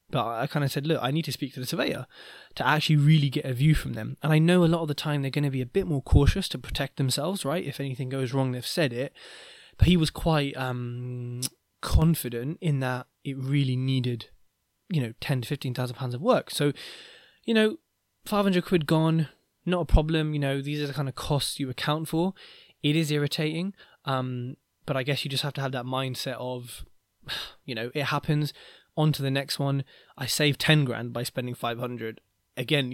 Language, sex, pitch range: English, male, 130-155 Hz